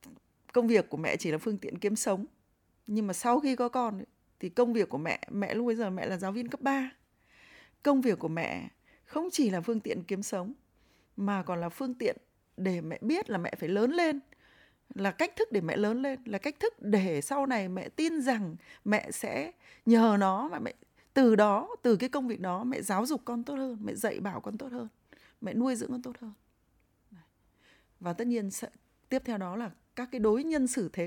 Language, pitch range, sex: Vietnamese, 200-255 Hz, female